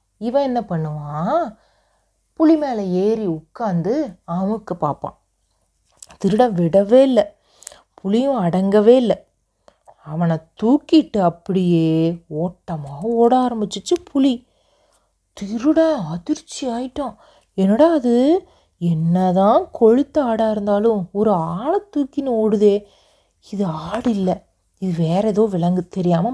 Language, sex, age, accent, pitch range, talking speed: Tamil, female, 30-49, native, 175-230 Hz, 95 wpm